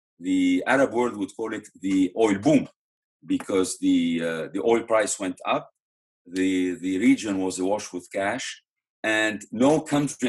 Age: 40-59